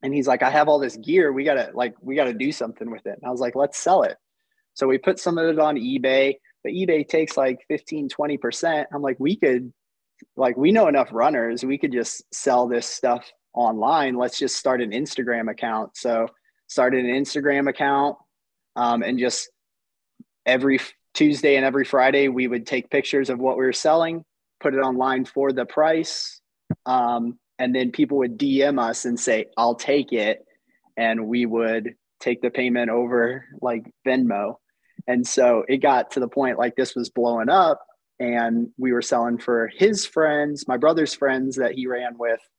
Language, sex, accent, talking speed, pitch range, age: English, male, American, 195 wpm, 120-140 Hz, 20-39